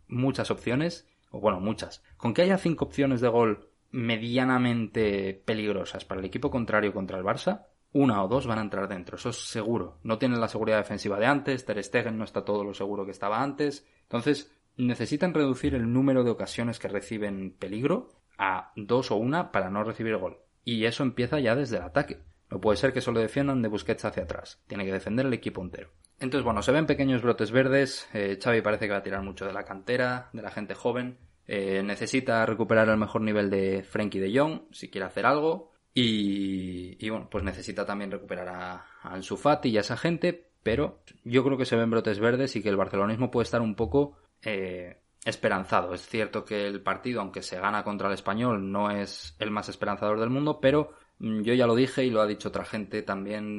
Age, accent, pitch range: 20-39, Spanish, 100-125 Hz